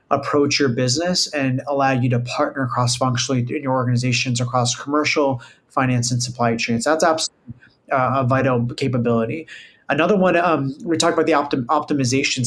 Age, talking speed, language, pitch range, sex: 30-49, 160 wpm, English, 125-150 Hz, male